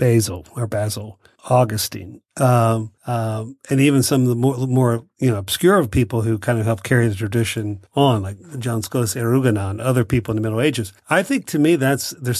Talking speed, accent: 205 wpm, American